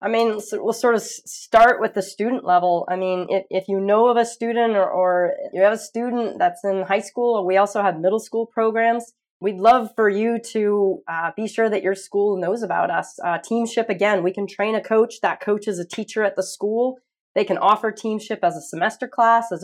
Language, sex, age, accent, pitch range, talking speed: English, female, 20-39, American, 190-230 Hz, 230 wpm